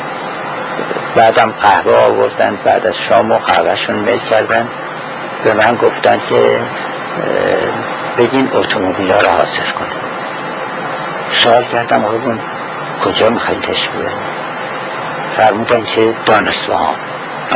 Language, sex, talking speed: Persian, male, 100 wpm